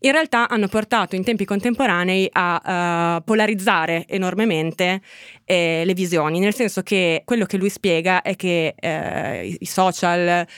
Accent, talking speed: native, 140 wpm